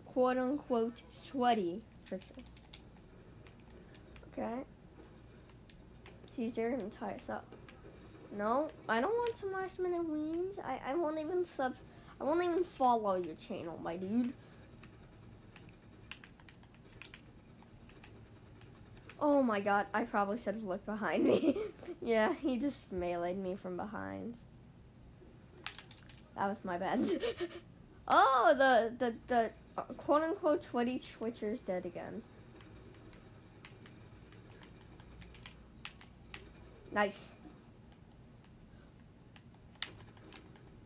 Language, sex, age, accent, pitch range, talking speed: English, female, 10-29, American, 195-295 Hz, 90 wpm